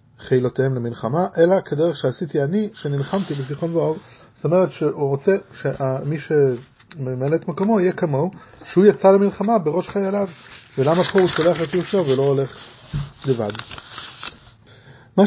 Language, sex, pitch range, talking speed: English, male, 130-170 Hz, 100 wpm